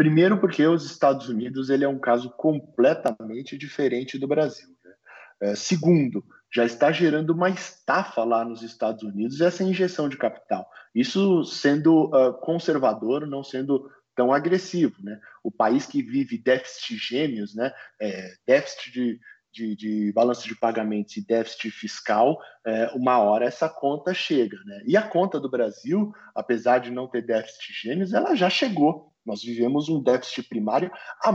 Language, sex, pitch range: Portuguese, male, 115-175 Hz